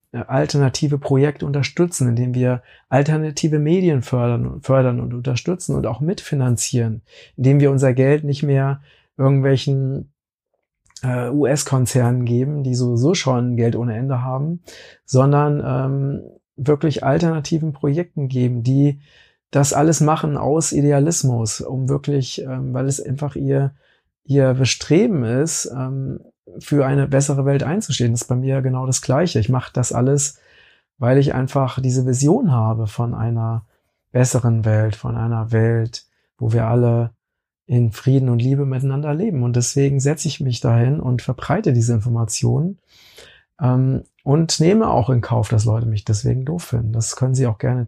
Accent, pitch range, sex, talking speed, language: German, 120-145 Hz, male, 150 wpm, German